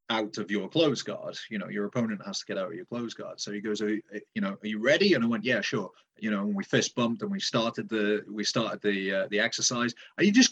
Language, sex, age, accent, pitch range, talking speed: English, male, 30-49, British, 110-170 Hz, 280 wpm